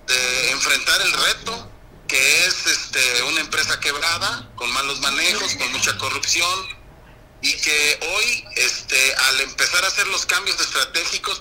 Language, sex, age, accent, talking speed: Spanish, male, 40-59, Mexican, 140 wpm